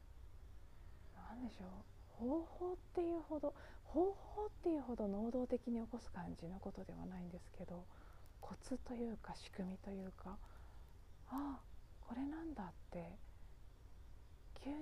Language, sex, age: Japanese, female, 40-59